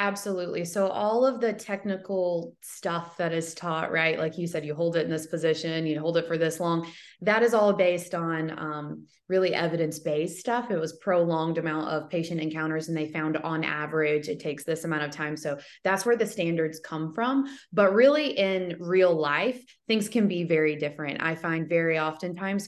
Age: 20-39